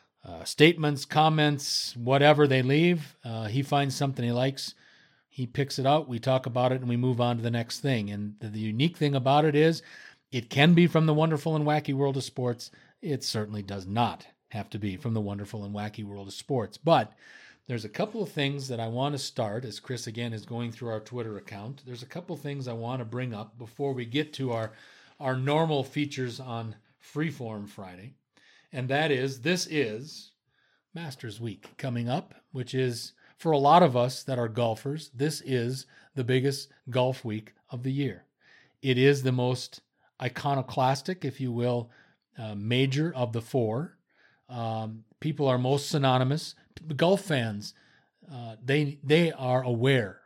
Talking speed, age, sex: 185 wpm, 40-59, male